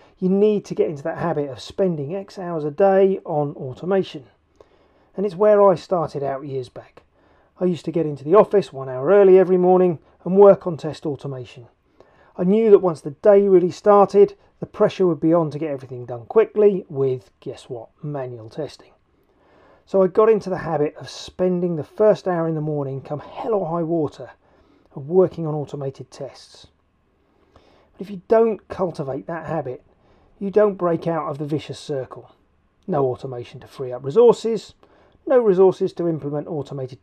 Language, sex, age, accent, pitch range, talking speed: English, male, 40-59, British, 135-195 Hz, 185 wpm